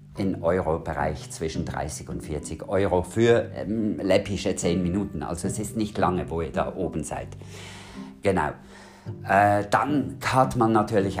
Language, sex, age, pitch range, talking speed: German, male, 50-69, 90-120 Hz, 145 wpm